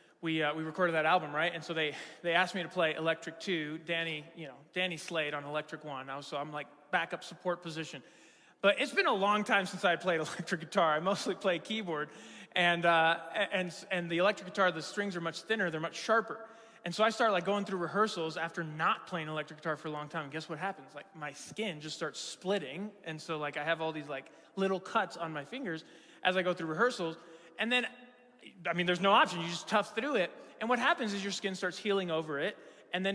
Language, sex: English, male